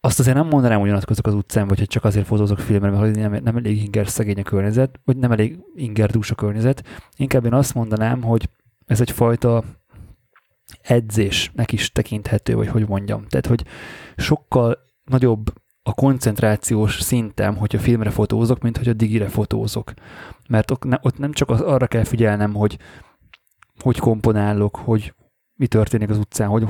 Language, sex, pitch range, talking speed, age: Hungarian, male, 105-125 Hz, 155 wpm, 20-39